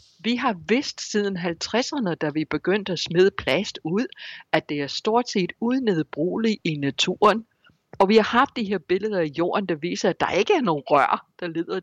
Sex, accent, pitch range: female, native, 155-215 Hz